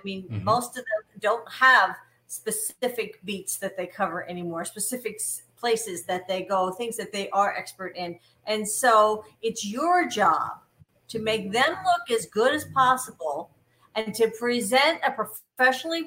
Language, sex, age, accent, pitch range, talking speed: English, female, 50-69, American, 190-255 Hz, 155 wpm